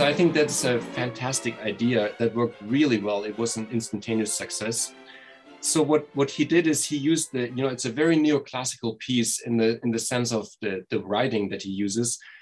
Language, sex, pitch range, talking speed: English, male, 110-130 Hz, 215 wpm